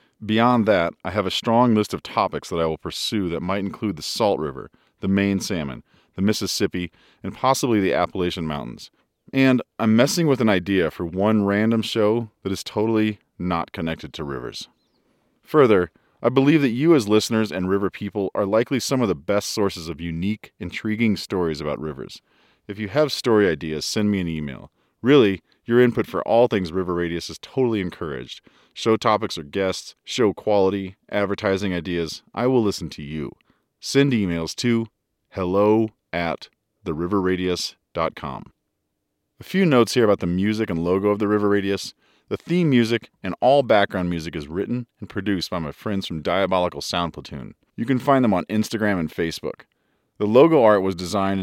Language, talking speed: English, 175 wpm